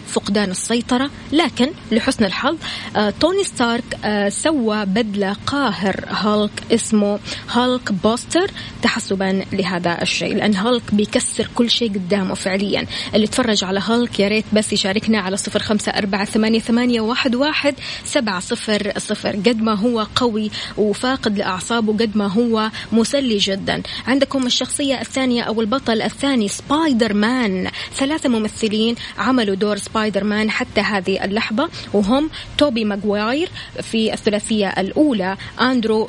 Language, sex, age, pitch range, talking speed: Arabic, female, 20-39, 205-255 Hz, 135 wpm